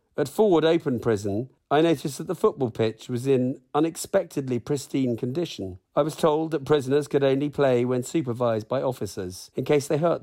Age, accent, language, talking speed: 40-59, British, English, 180 wpm